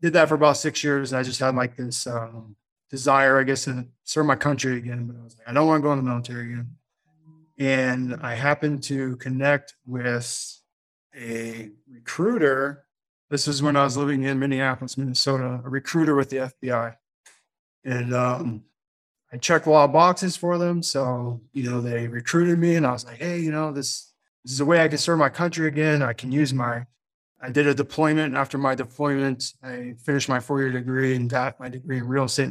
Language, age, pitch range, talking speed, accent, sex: English, 20-39, 125-145 Hz, 210 wpm, American, male